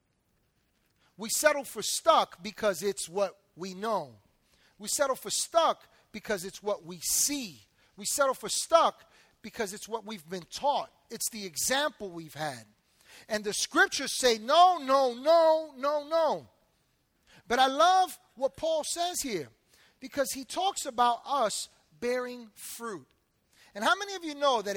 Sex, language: male, English